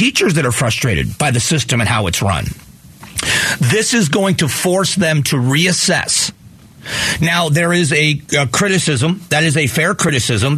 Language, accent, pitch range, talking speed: English, American, 130-170 Hz, 170 wpm